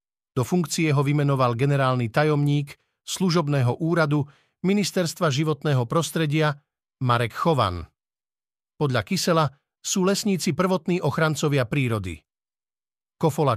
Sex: male